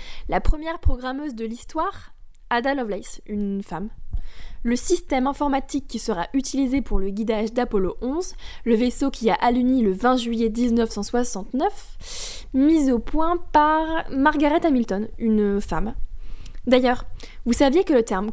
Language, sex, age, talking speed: French, female, 10-29, 140 wpm